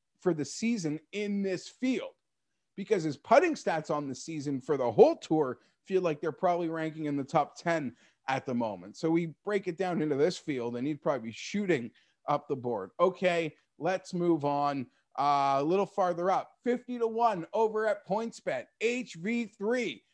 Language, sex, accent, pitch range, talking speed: English, male, American, 160-215 Hz, 190 wpm